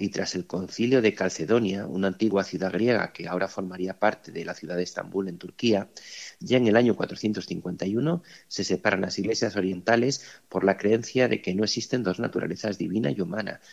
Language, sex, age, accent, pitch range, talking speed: Spanish, male, 40-59, Spanish, 95-120 Hz, 190 wpm